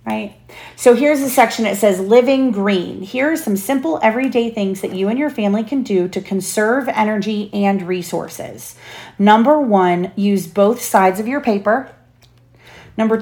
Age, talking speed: 30-49, 165 wpm